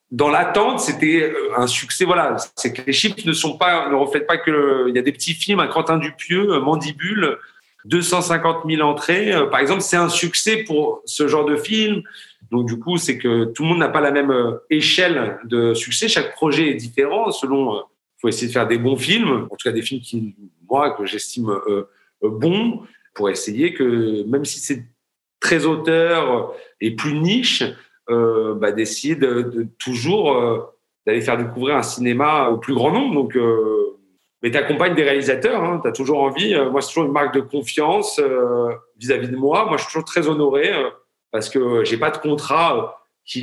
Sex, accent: male, French